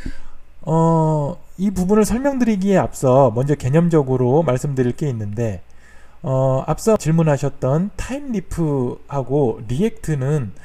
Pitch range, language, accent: 125-180 Hz, Korean, native